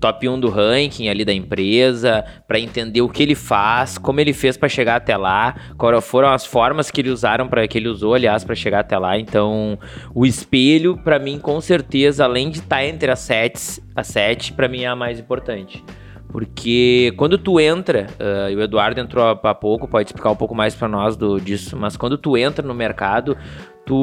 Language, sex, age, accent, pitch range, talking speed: Portuguese, male, 20-39, Brazilian, 110-150 Hz, 215 wpm